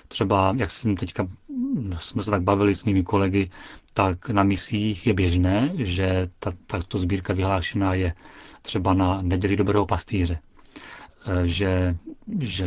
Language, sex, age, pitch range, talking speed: Czech, male, 40-59, 90-105 Hz, 135 wpm